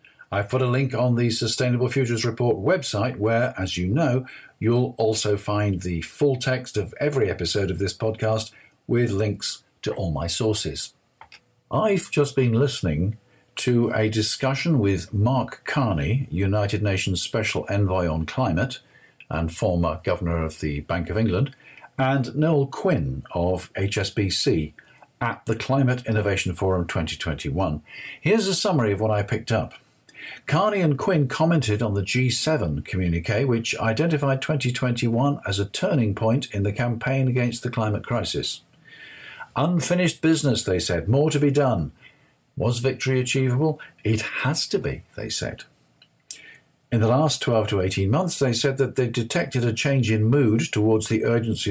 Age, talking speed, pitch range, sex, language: 50-69, 155 wpm, 100-135 Hz, male, English